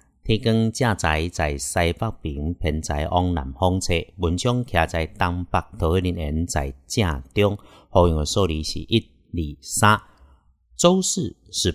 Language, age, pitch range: Chinese, 50-69, 80-105 Hz